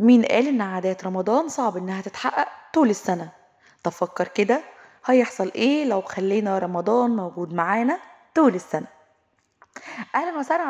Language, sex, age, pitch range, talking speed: Arabic, female, 20-39, 200-255 Hz, 130 wpm